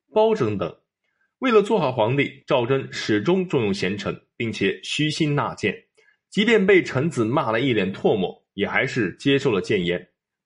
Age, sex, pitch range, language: 20-39, male, 115-175 Hz, Chinese